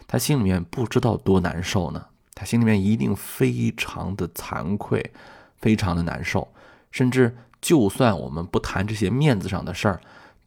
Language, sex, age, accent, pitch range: Chinese, male, 20-39, native, 95-115 Hz